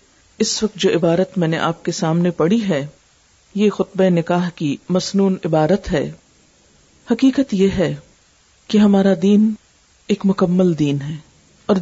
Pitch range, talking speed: 165-215 Hz, 145 wpm